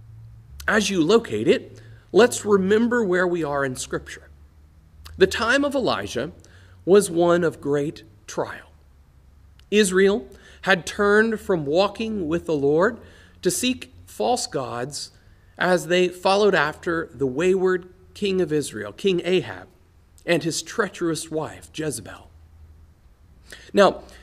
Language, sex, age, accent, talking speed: English, male, 40-59, American, 120 wpm